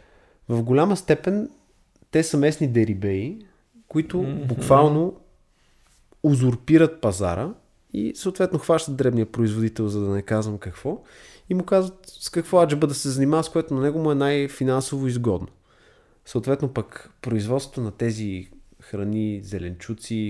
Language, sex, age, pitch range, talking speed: Bulgarian, male, 20-39, 105-155 Hz, 135 wpm